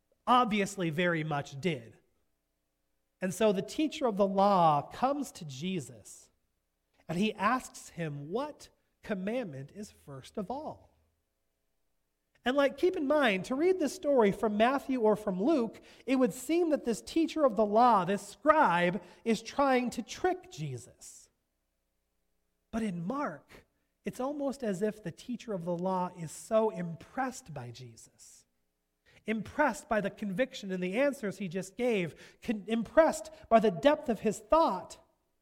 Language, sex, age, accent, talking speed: English, male, 30-49, American, 150 wpm